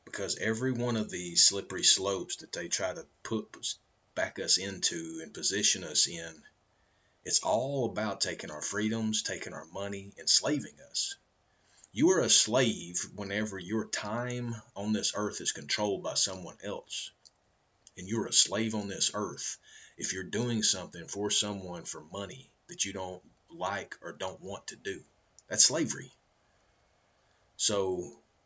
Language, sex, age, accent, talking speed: English, male, 30-49, American, 150 wpm